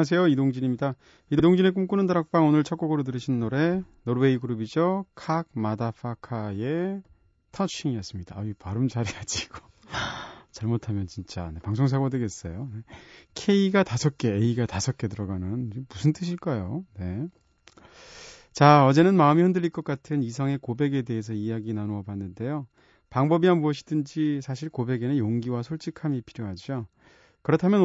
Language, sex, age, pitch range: Korean, male, 30-49, 105-155 Hz